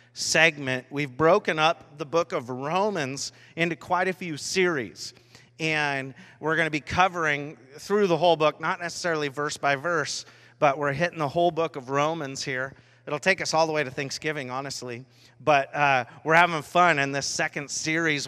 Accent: American